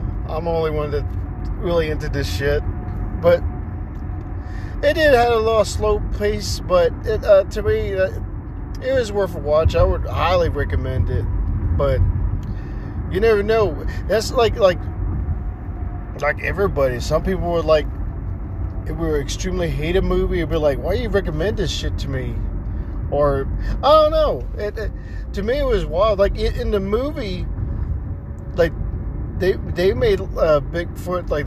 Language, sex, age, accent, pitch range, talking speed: English, male, 40-59, American, 90-145 Hz, 165 wpm